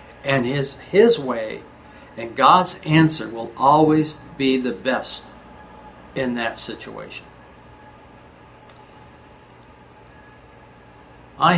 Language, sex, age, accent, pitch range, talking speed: English, male, 60-79, American, 105-155 Hz, 85 wpm